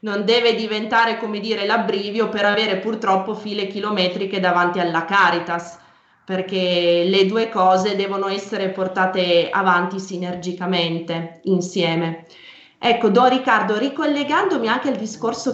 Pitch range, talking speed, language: 180-220 Hz, 120 wpm, Italian